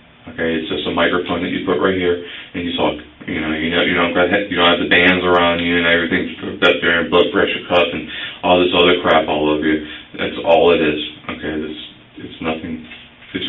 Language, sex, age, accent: English, male, 40-59, American